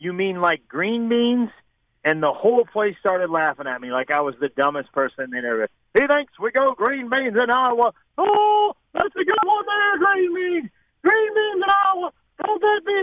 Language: English